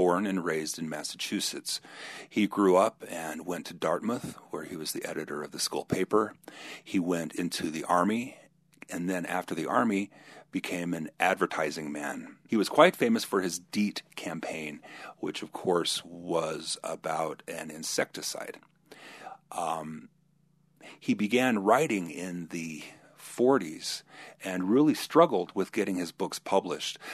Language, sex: English, male